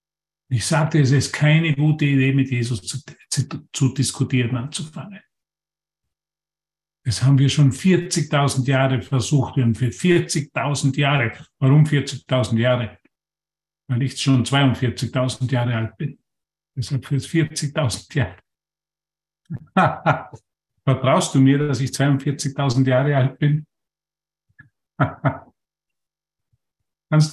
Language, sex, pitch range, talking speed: German, male, 135-160 Hz, 110 wpm